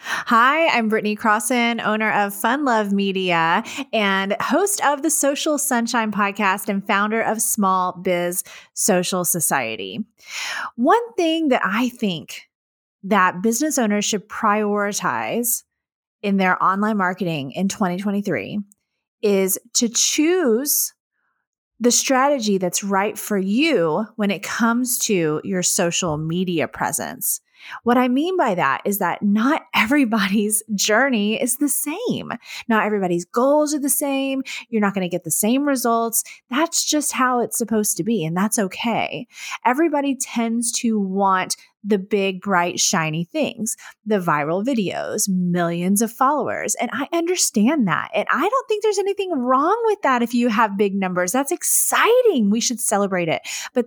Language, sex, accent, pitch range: English, female, American, 195-260 Hz